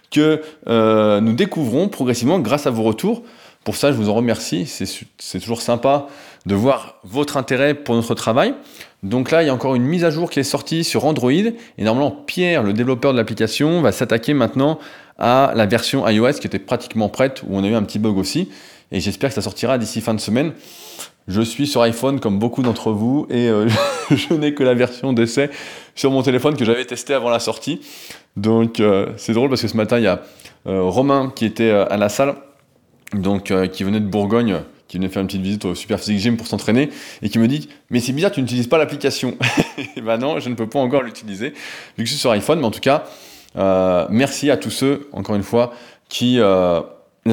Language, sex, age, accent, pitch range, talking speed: French, male, 20-39, French, 110-140 Hz, 225 wpm